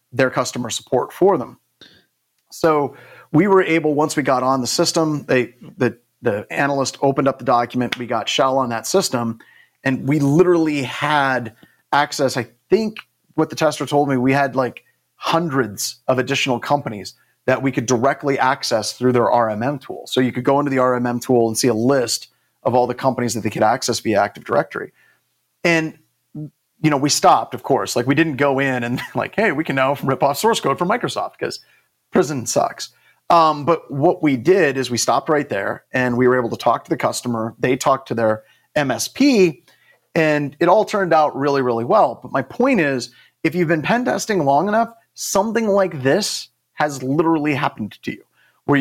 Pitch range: 120-155 Hz